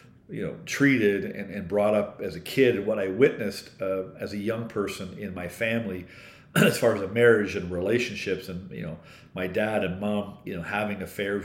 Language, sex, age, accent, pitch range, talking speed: English, male, 50-69, American, 95-115 Hz, 210 wpm